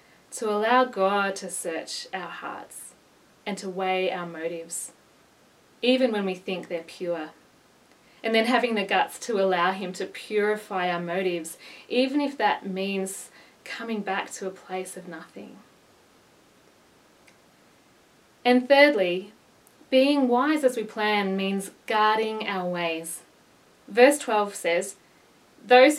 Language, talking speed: English, 130 wpm